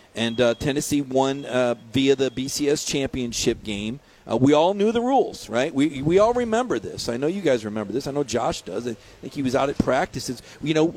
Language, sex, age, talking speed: English, male, 40-59, 225 wpm